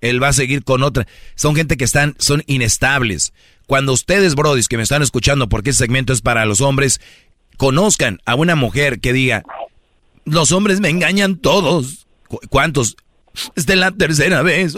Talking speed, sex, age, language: 180 wpm, male, 40-59, Spanish